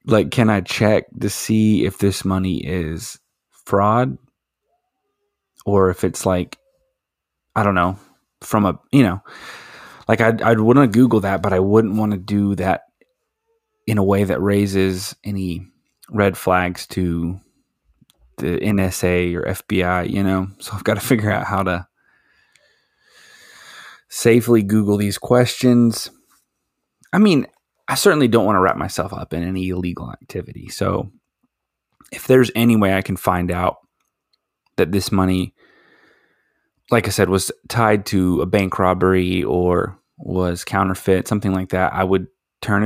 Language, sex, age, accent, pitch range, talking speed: English, male, 30-49, American, 95-115 Hz, 145 wpm